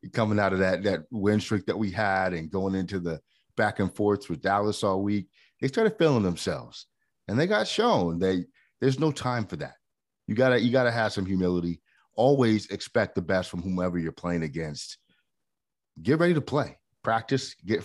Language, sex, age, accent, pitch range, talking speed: English, male, 30-49, American, 90-115 Hz, 190 wpm